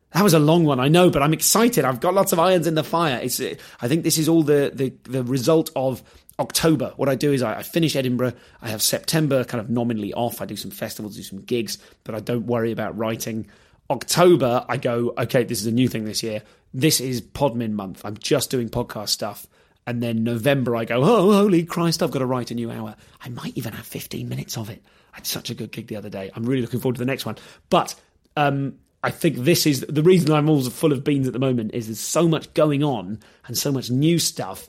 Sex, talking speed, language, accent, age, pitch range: male, 250 wpm, English, British, 30-49, 115-150 Hz